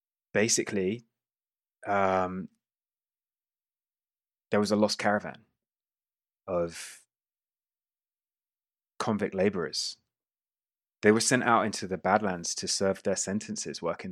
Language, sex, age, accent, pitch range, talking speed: English, male, 20-39, British, 90-110 Hz, 95 wpm